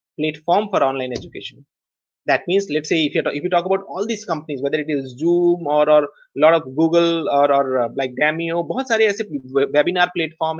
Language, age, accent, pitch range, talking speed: Hindi, 30-49, native, 145-200 Hz, 205 wpm